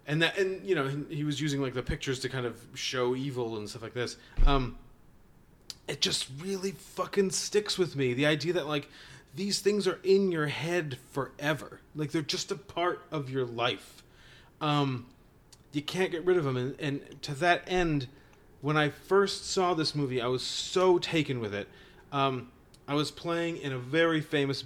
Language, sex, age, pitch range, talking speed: English, male, 30-49, 130-160 Hz, 190 wpm